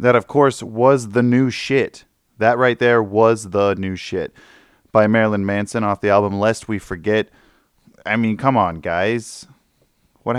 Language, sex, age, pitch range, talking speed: English, male, 20-39, 100-120 Hz, 170 wpm